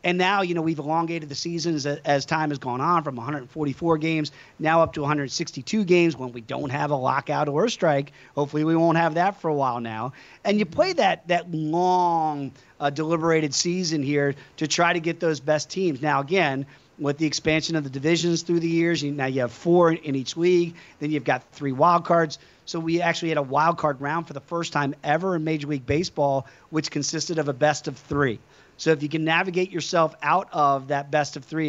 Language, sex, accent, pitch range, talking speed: English, male, American, 140-165 Hz, 220 wpm